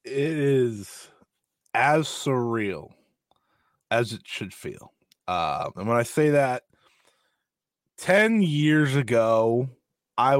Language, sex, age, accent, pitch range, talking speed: English, male, 20-39, American, 110-140 Hz, 105 wpm